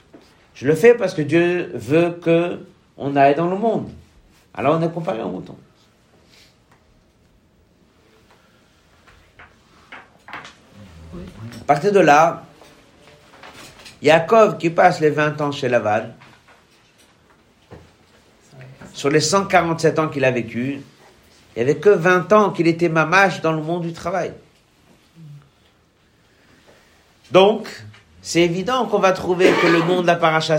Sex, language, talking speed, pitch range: male, French, 125 wpm, 140-185 Hz